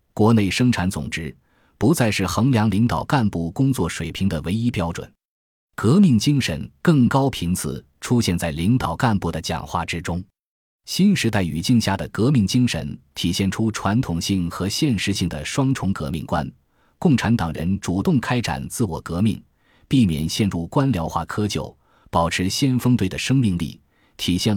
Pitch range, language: 85-115 Hz, Chinese